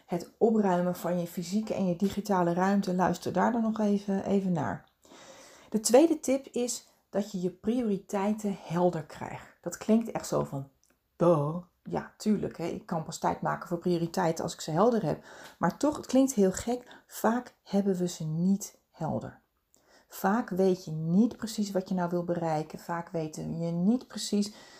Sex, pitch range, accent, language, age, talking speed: female, 175-215 Hz, Dutch, Dutch, 40-59, 180 wpm